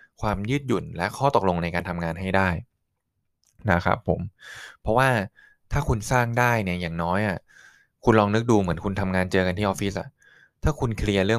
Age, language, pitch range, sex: 20-39, Thai, 95-120 Hz, male